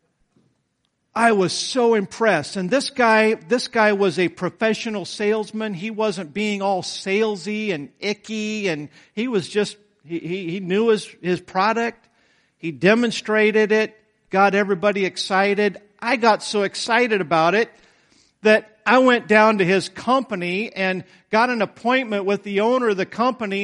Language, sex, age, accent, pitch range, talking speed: English, male, 50-69, American, 190-225 Hz, 150 wpm